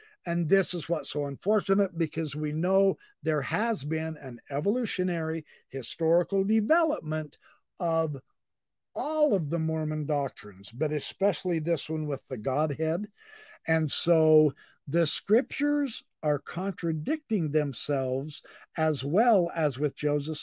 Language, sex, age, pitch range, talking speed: English, male, 60-79, 150-210 Hz, 120 wpm